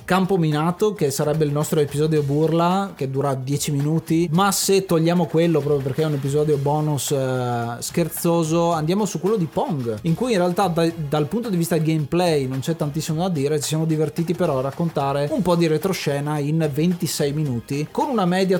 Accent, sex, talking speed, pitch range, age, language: native, male, 190 wpm, 145-175 Hz, 20-39, Italian